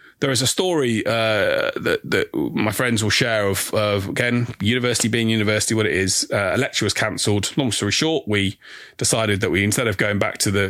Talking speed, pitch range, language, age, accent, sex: 215 wpm, 105-130 Hz, English, 30-49, British, male